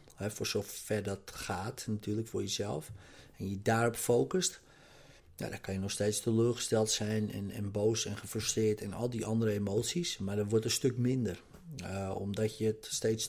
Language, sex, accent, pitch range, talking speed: Dutch, male, Dutch, 100-120 Hz, 175 wpm